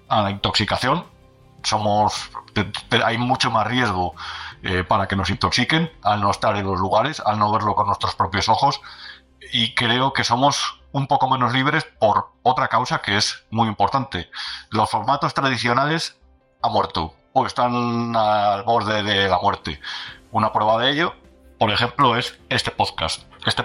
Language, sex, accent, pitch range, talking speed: Spanish, male, Spanish, 100-120 Hz, 160 wpm